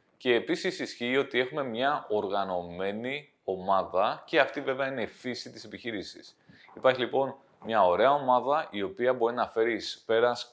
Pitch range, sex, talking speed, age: 105-140 Hz, male, 160 wpm, 20-39